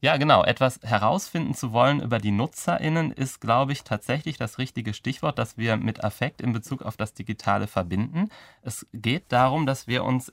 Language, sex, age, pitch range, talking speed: German, male, 30-49, 105-130 Hz, 185 wpm